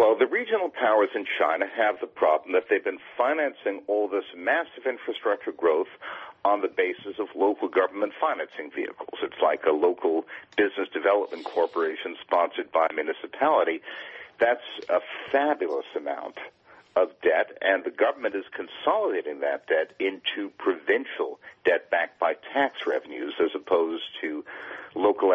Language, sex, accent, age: English, male, American, 50-69